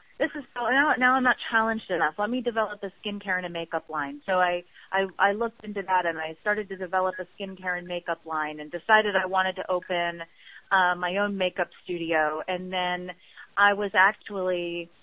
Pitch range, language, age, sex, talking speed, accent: 175-205 Hz, English, 30-49, female, 205 wpm, American